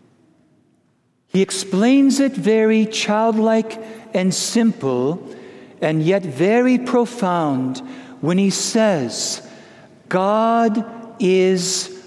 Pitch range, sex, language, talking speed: 175-240 Hz, male, English, 80 wpm